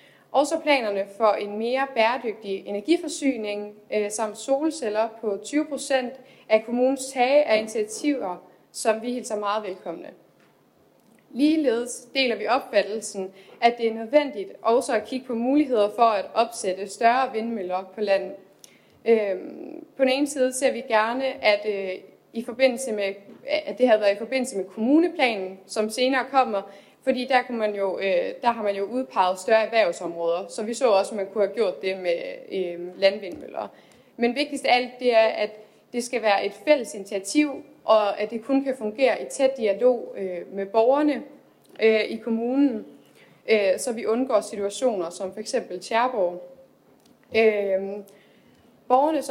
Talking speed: 150 wpm